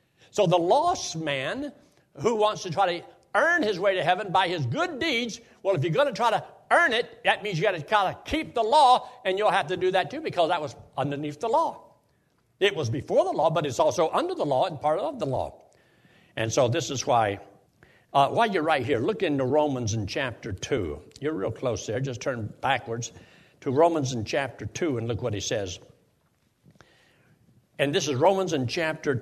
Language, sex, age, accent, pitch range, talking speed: English, male, 60-79, American, 125-210 Hz, 215 wpm